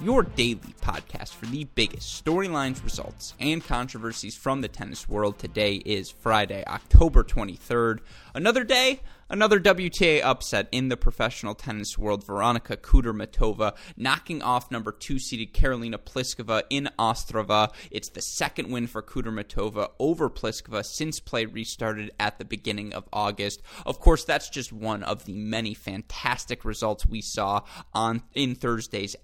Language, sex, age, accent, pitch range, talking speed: English, male, 20-39, American, 105-125 Hz, 145 wpm